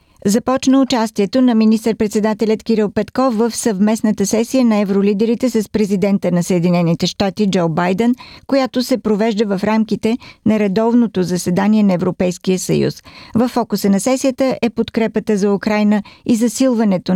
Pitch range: 195-225 Hz